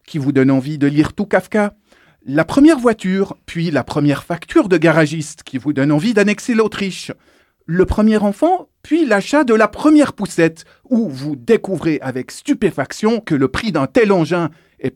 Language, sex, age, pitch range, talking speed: French, male, 40-59, 135-200 Hz, 175 wpm